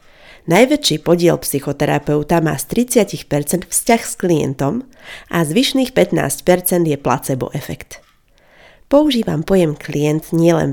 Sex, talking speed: female, 105 wpm